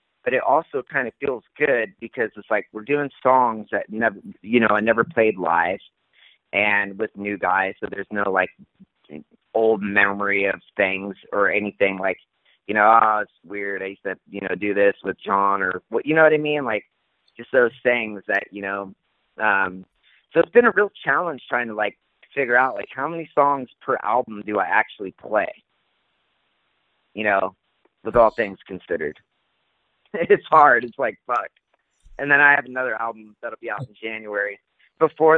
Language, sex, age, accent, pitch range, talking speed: English, male, 30-49, American, 100-140 Hz, 185 wpm